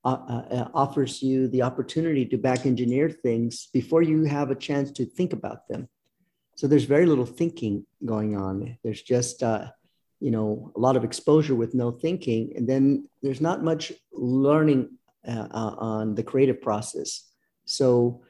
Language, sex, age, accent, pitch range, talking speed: English, male, 50-69, American, 120-145 Hz, 165 wpm